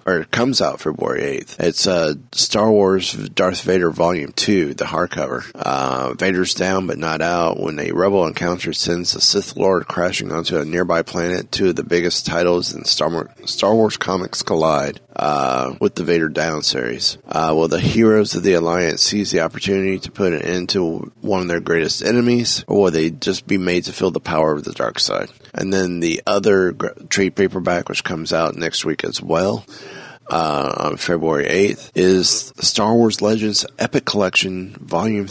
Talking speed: 190 wpm